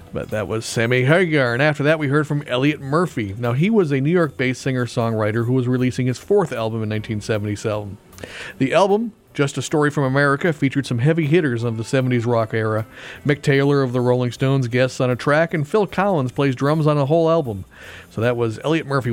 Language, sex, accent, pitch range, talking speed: English, male, American, 115-150 Hz, 215 wpm